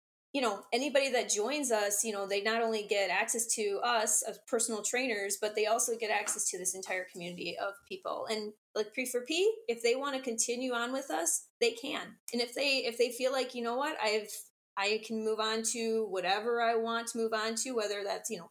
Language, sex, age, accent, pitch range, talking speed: English, female, 20-39, American, 210-250 Hz, 230 wpm